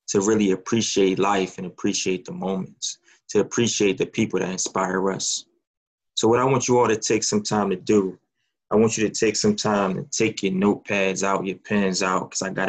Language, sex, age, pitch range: English, male, 20-39, 95-110 Hz